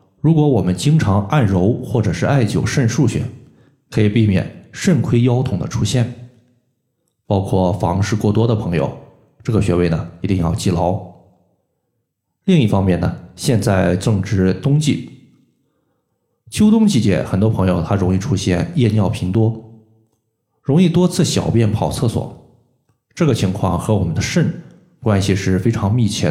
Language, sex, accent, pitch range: Chinese, male, native, 95-120 Hz